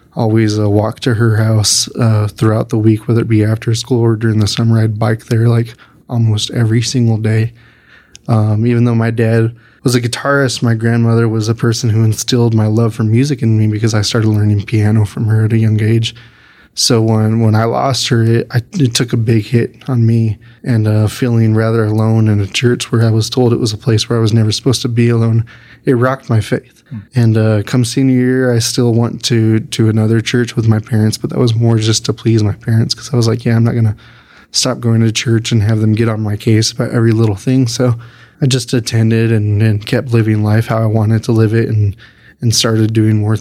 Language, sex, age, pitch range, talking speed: English, male, 20-39, 110-120 Hz, 235 wpm